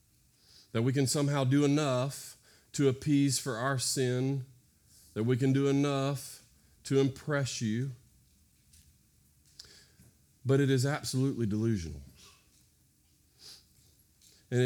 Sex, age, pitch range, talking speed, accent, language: male, 40-59, 95-135 Hz, 100 wpm, American, English